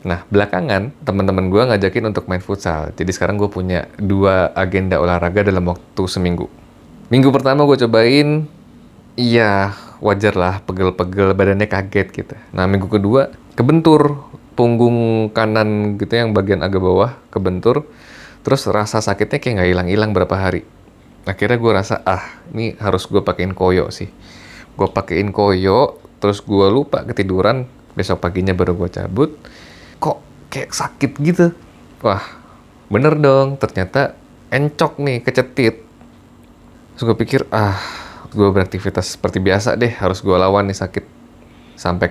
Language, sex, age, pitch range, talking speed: Indonesian, male, 20-39, 95-120 Hz, 135 wpm